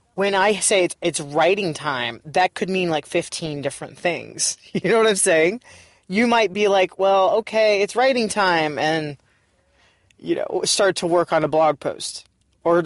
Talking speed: 175 wpm